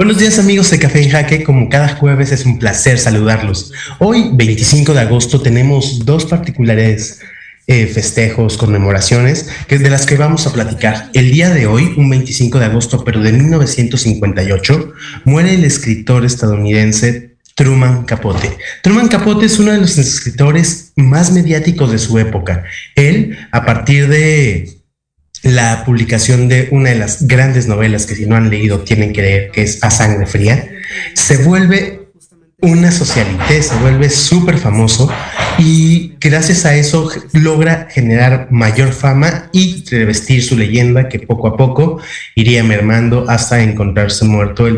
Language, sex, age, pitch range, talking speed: Spanish, male, 30-49, 110-150 Hz, 155 wpm